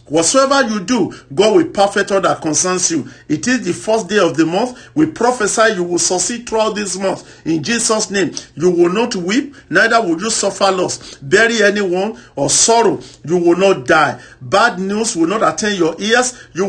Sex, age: male, 50-69